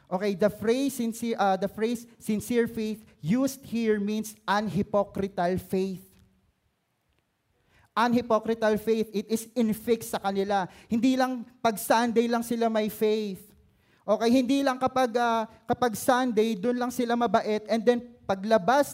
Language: Filipino